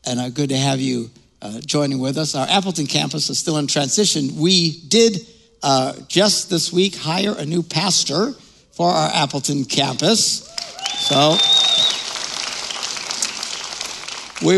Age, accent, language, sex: 60-79, American, English, male